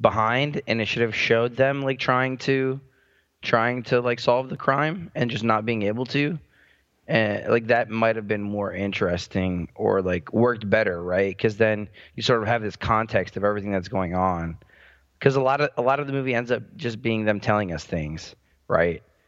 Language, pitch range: English, 100-125 Hz